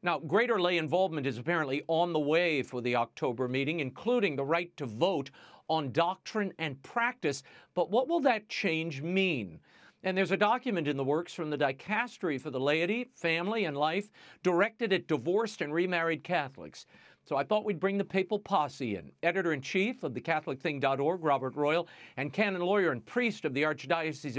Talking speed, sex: 180 wpm, male